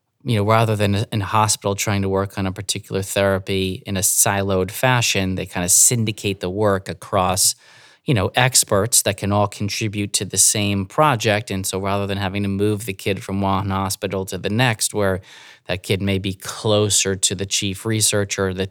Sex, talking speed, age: male, 200 wpm, 30-49